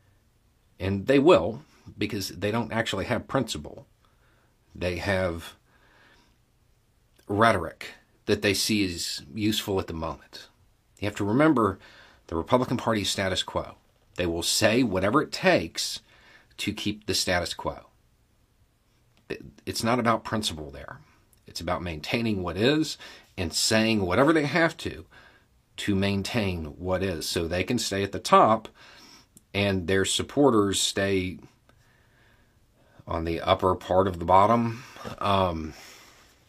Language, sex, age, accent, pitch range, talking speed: English, male, 40-59, American, 90-115 Hz, 130 wpm